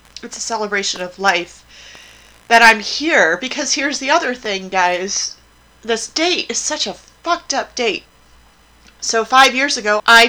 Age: 30-49